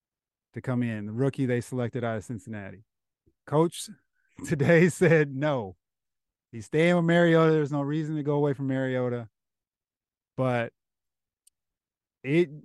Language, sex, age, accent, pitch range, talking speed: English, male, 20-39, American, 120-155 Hz, 135 wpm